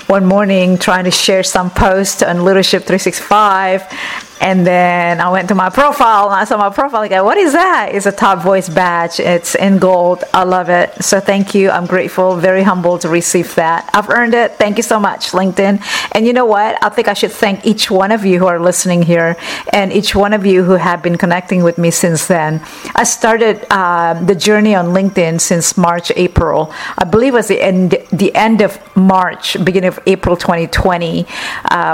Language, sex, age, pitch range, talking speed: English, female, 50-69, 170-195 Hz, 205 wpm